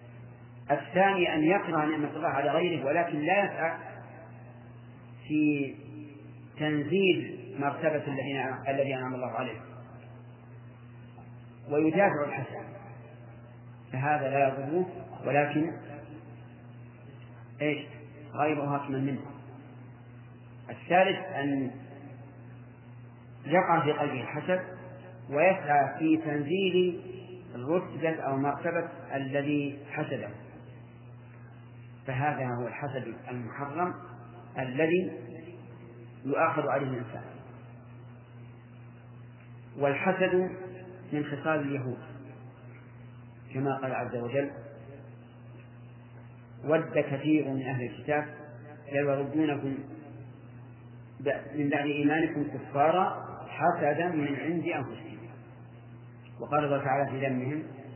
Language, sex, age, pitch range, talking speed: Arabic, male, 40-59, 120-150 Hz, 80 wpm